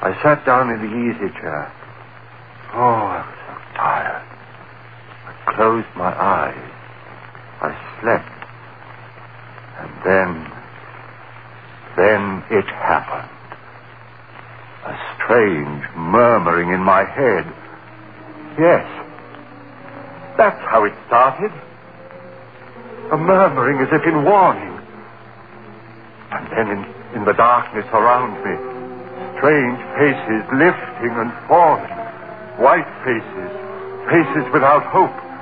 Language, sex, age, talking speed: English, male, 60-79, 100 wpm